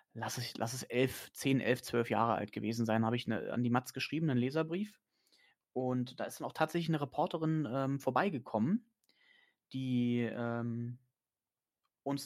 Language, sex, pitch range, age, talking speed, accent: German, male, 115-140 Hz, 30-49, 165 wpm, German